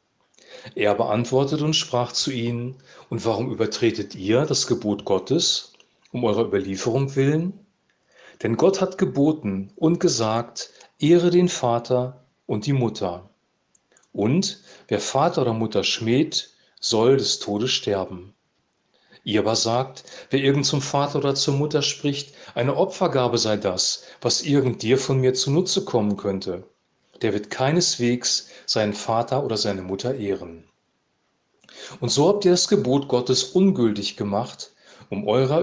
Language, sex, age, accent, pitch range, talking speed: German, male, 40-59, German, 105-145 Hz, 140 wpm